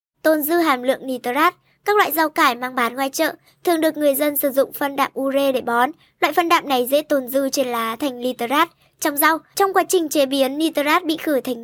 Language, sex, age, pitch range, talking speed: Vietnamese, male, 10-29, 255-315 Hz, 235 wpm